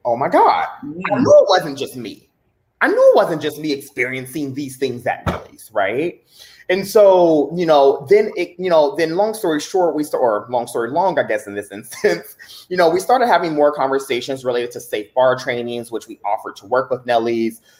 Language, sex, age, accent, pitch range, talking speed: English, male, 30-49, American, 115-165 Hz, 210 wpm